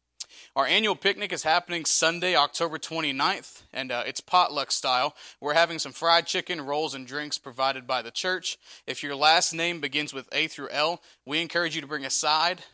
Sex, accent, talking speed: male, American, 195 wpm